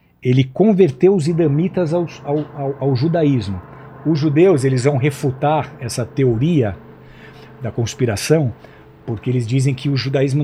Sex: male